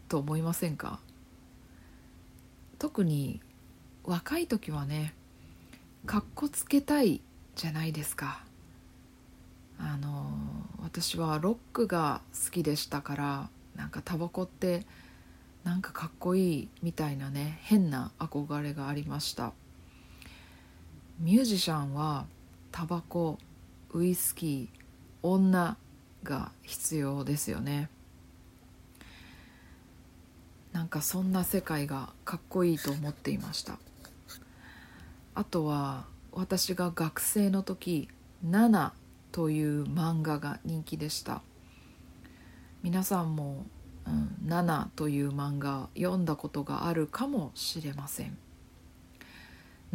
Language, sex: Japanese, female